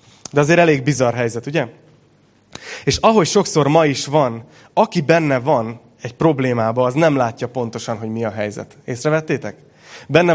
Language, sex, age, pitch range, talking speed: Hungarian, male, 30-49, 125-165 Hz, 155 wpm